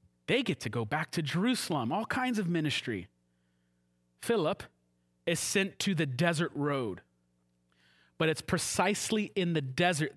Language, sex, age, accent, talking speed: English, male, 30-49, American, 140 wpm